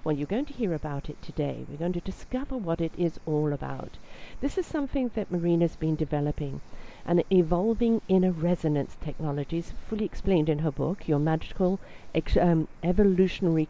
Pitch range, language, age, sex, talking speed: 160-200 Hz, English, 50-69, female, 175 wpm